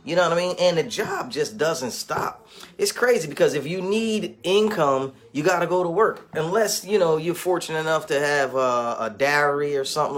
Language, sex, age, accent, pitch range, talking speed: English, male, 30-49, American, 145-205 Hz, 210 wpm